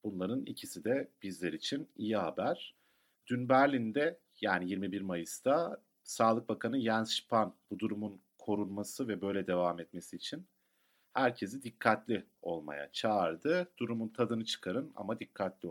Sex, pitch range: male, 90-120 Hz